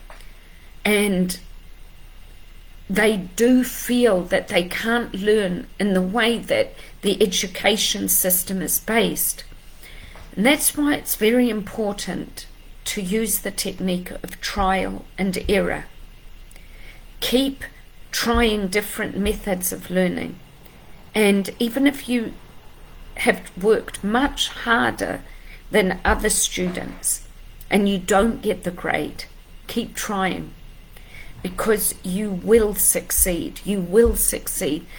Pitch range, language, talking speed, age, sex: 185-230 Hz, English, 110 wpm, 50-69, female